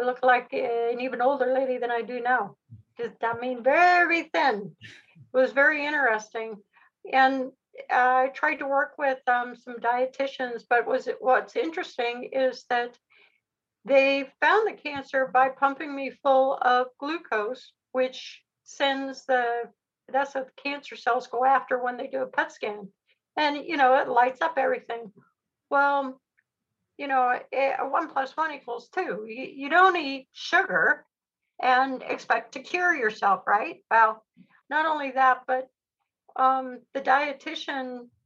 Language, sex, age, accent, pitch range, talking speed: English, female, 60-79, American, 245-275 Hz, 150 wpm